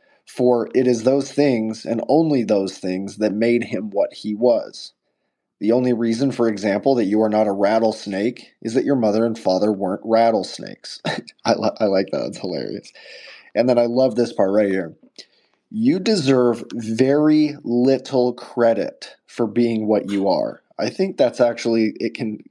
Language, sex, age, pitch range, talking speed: English, male, 20-39, 110-135 Hz, 170 wpm